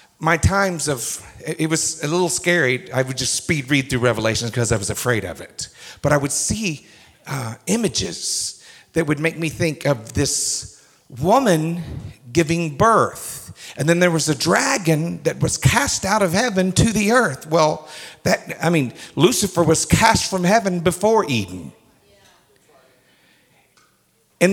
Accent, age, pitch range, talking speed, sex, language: American, 50-69, 140-185 Hz, 155 wpm, male, English